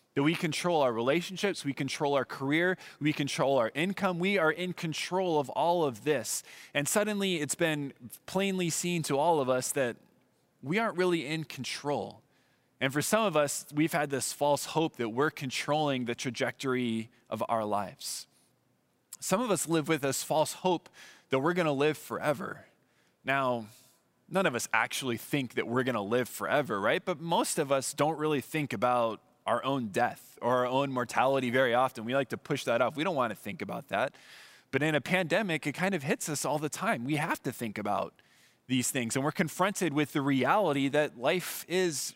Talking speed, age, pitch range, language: 195 wpm, 20-39, 130-160 Hz, English